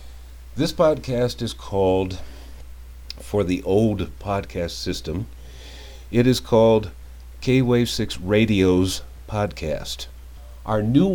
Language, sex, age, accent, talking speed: English, male, 50-69, American, 100 wpm